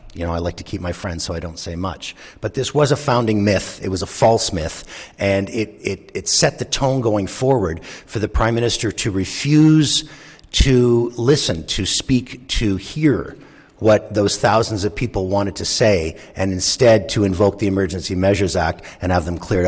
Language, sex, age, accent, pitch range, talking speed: English, male, 50-69, American, 95-125 Hz, 200 wpm